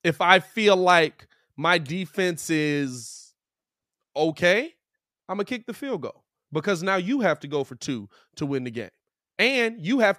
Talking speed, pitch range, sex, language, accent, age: 175 wpm, 145-220 Hz, male, English, American, 20-39